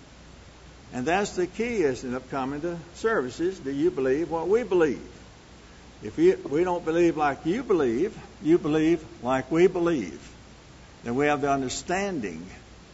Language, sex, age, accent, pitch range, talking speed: English, male, 60-79, American, 125-165 Hz, 145 wpm